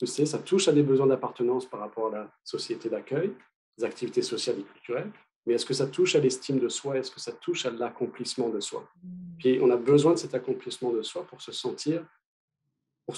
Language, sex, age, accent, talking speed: French, male, 40-59, French, 220 wpm